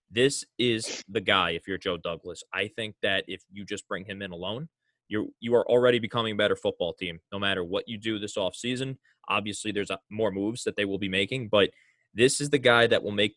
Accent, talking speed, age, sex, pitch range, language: American, 225 wpm, 20-39, male, 100-120 Hz, English